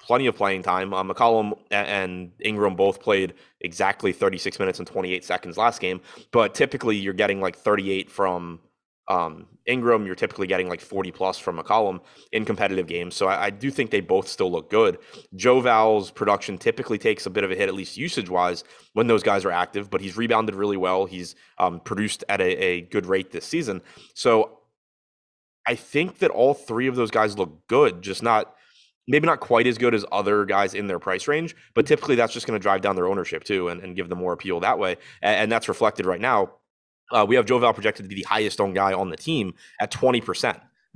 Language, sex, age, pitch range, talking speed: English, male, 20-39, 95-115 Hz, 215 wpm